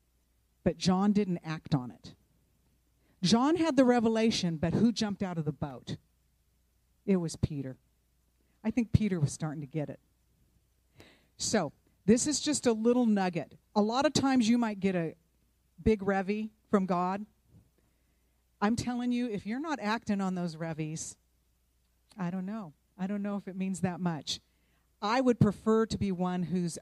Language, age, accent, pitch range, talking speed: English, 50-69, American, 150-225 Hz, 170 wpm